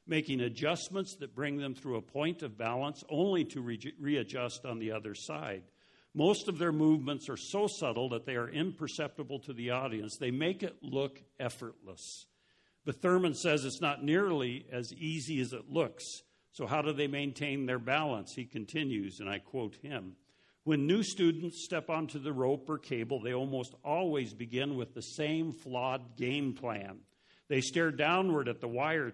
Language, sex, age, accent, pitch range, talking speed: English, male, 60-79, American, 125-155 Hz, 175 wpm